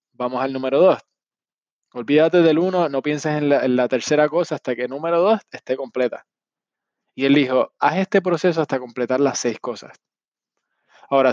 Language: Spanish